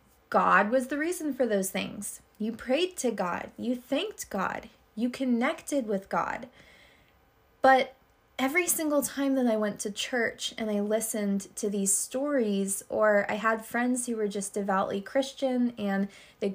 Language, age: English, 20-39